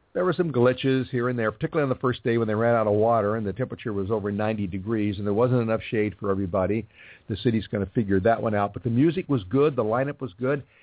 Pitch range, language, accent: 105-140 Hz, English, American